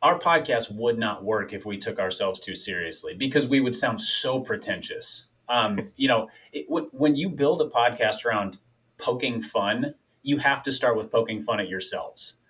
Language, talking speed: English, 180 wpm